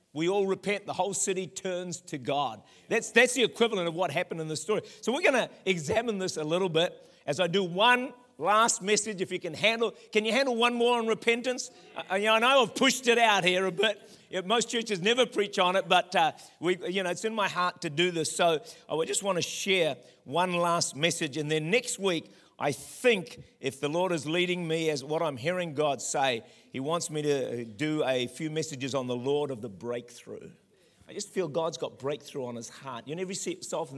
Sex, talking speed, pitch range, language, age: male, 235 wpm, 135-195 Hz, English, 50-69